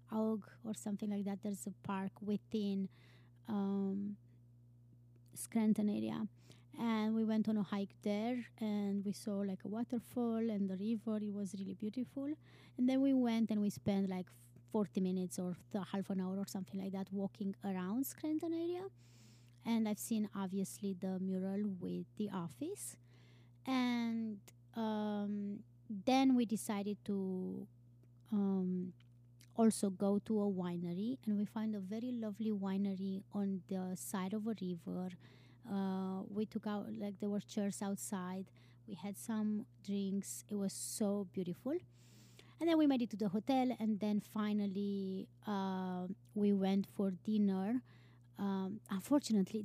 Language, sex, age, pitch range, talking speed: English, female, 20-39, 185-215 Hz, 150 wpm